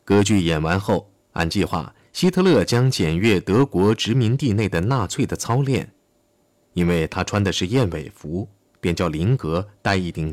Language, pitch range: Chinese, 90-130 Hz